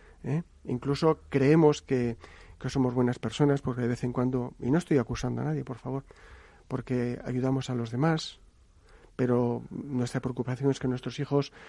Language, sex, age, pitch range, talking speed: Spanish, male, 40-59, 125-150 Hz, 170 wpm